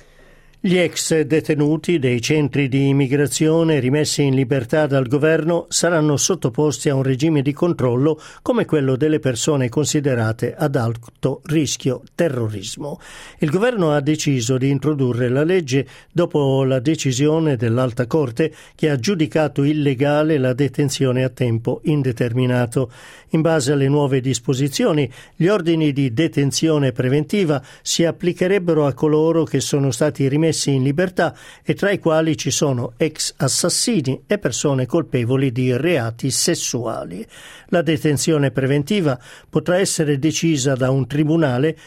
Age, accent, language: 50-69, native, Italian